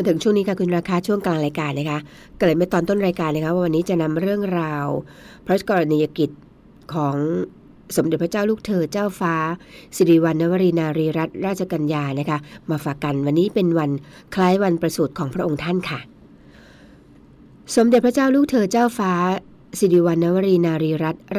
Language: Thai